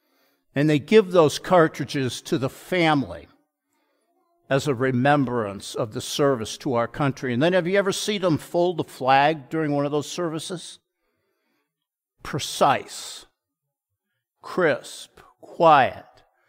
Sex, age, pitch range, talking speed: male, 50-69, 135-195 Hz, 125 wpm